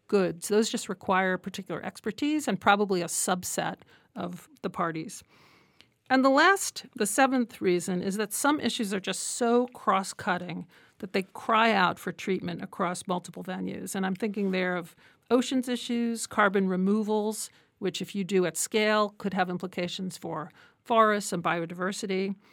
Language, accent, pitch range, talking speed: English, American, 185-215 Hz, 155 wpm